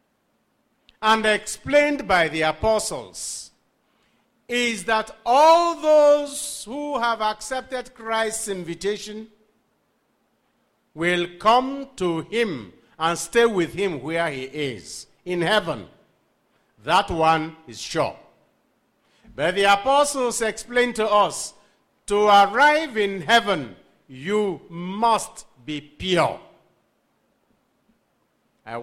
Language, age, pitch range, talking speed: English, 50-69, 155-240 Hz, 95 wpm